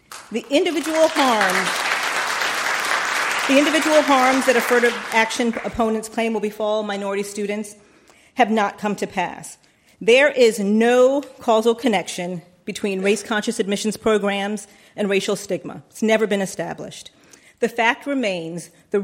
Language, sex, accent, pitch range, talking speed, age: English, female, American, 190-230 Hz, 125 wpm, 40-59